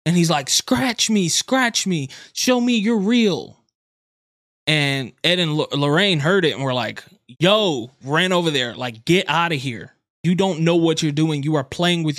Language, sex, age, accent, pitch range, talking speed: English, male, 20-39, American, 130-170 Hz, 190 wpm